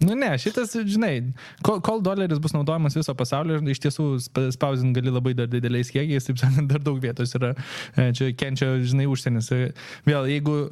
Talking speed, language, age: 175 wpm, English, 20-39